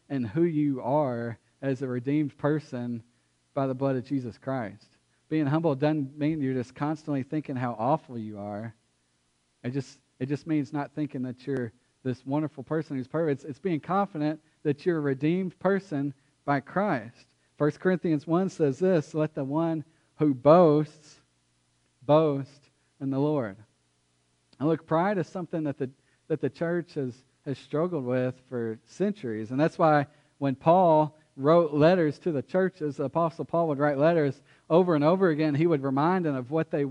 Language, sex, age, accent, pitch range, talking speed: English, male, 40-59, American, 135-165 Hz, 175 wpm